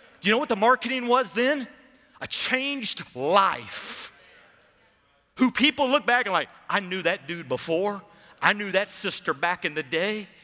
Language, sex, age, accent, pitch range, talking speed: English, male, 40-59, American, 125-195 Hz, 165 wpm